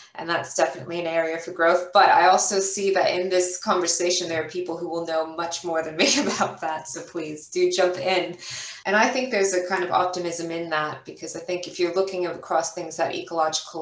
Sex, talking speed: female, 225 wpm